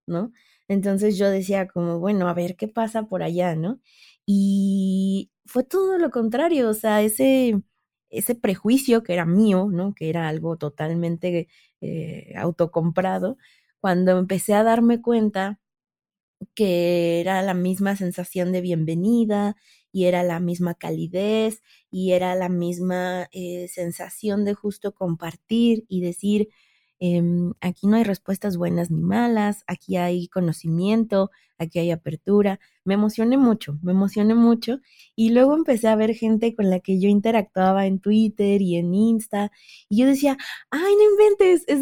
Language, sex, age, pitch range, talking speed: Spanish, female, 20-39, 180-225 Hz, 150 wpm